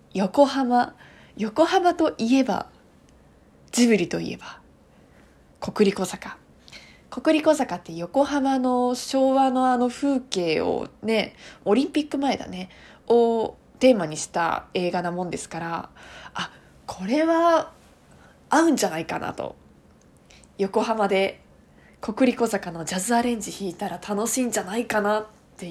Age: 20-39